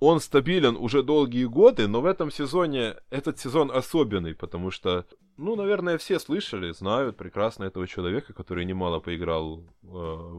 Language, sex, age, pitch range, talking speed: Ukrainian, male, 20-39, 95-140 Hz, 150 wpm